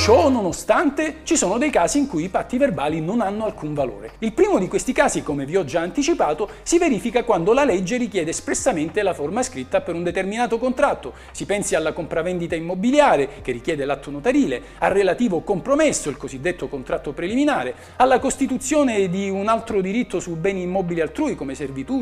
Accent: native